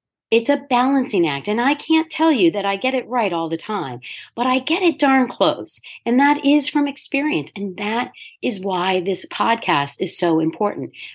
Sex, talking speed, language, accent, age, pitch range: female, 200 wpm, English, American, 40-59, 180-265 Hz